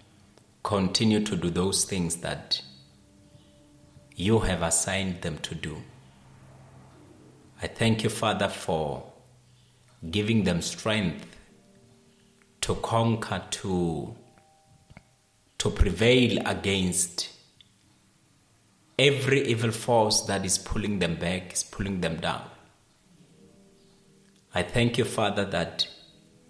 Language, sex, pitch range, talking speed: English, male, 95-115 Hz, 95 wpm